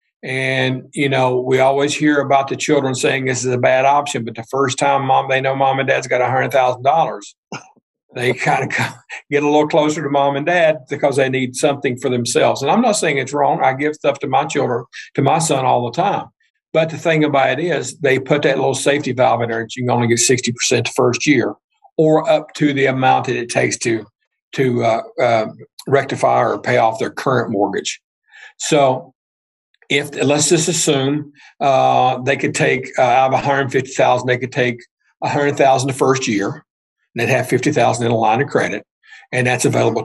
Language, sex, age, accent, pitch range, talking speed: English, male, 50-69, American, 125-145 Hz, 205 wpm